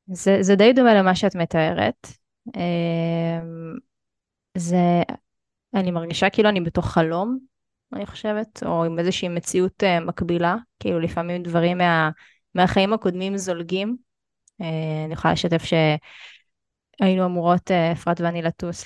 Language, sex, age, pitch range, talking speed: Hebrew, female, 20-39, 170-220 Hz, 115 wpm